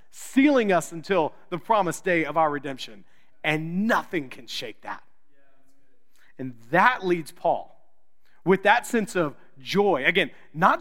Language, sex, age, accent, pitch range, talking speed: English, male, 40-59, American, 140-200 Hz, 140 wpm